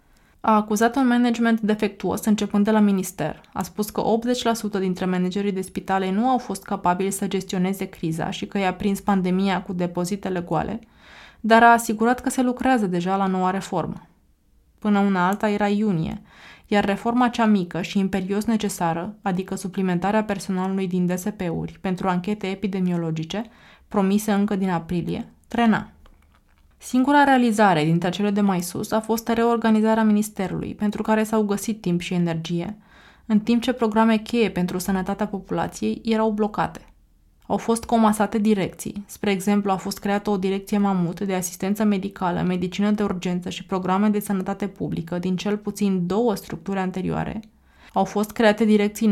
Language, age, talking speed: Romanian, 20-39, 155 wpm